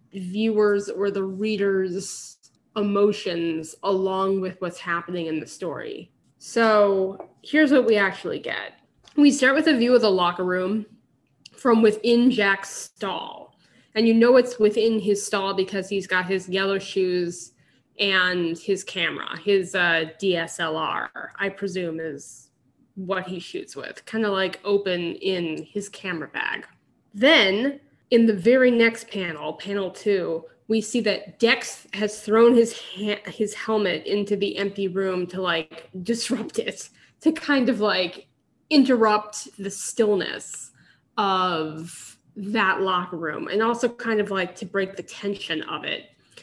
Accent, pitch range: American, 185-220 Hz